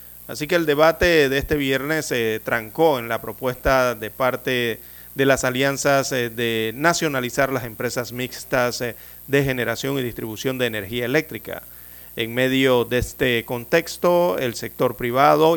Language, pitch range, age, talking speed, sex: Spanish, 115-145 Hz, 40-59, 155 wpm, male